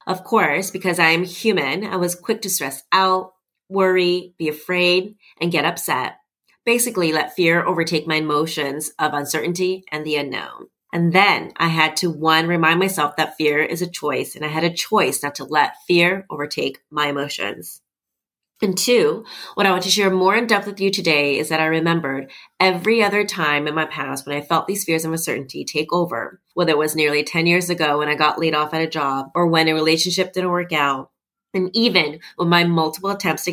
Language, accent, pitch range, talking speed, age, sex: English, American, 150-185 Hz, 205 wpm, 30-49, female